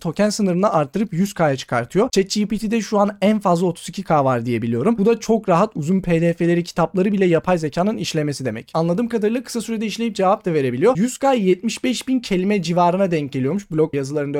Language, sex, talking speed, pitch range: Turkish, male, 175 wpm, 160-215 Hz